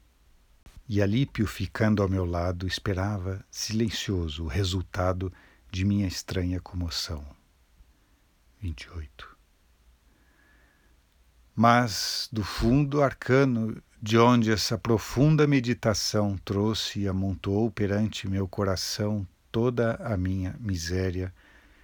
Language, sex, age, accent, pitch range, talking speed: Portuguese, male, 60-79, Brazilian, 85-115 Hz, 95 wpm